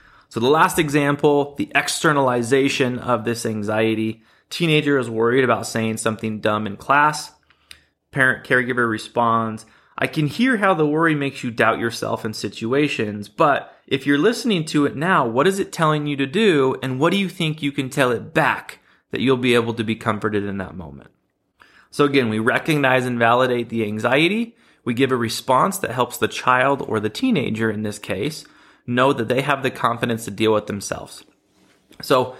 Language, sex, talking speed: English, male, 185 wpm